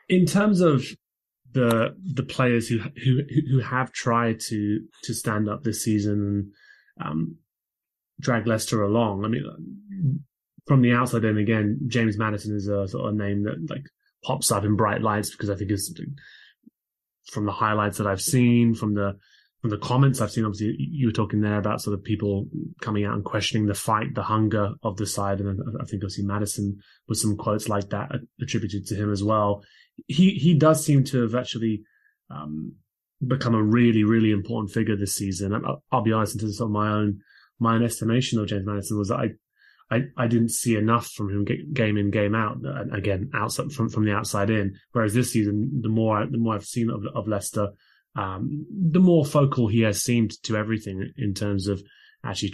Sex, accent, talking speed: male, British, 200 wpm